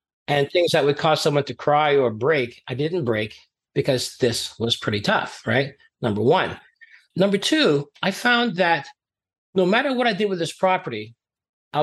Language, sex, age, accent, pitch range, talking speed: English, male, 40-59, American, 145-190 Hz, 180 wpm